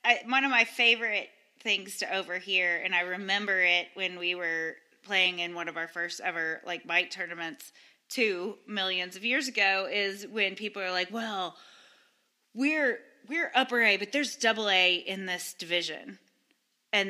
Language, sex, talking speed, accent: English, female, 165 wpm, American